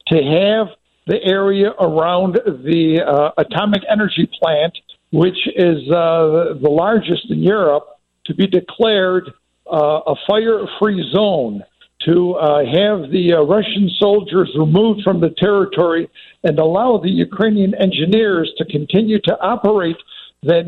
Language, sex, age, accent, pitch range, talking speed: English, male, 60-79, American, 165-205 Hz, 130 wpm